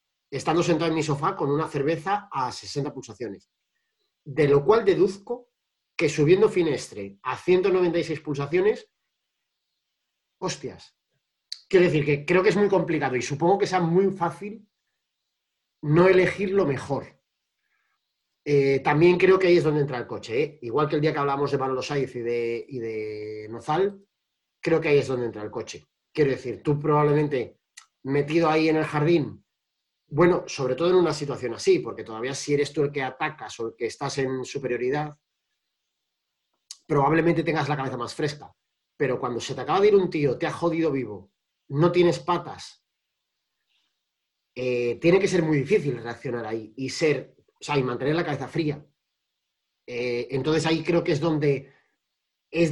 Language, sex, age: Spanish, male, 30-49